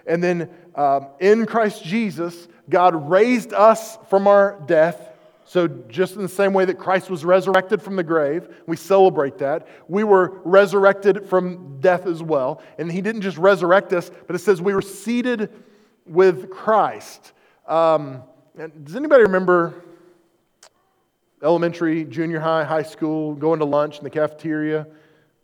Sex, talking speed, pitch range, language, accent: male, 150 wpm, 155-205 Hz, English, American